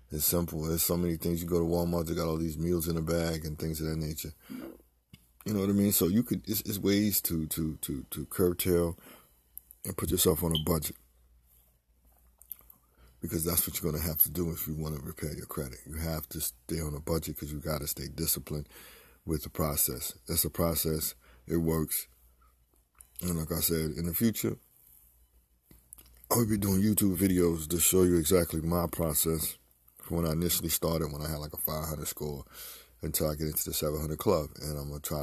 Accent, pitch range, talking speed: American, 75-85 Hz, 210 wpm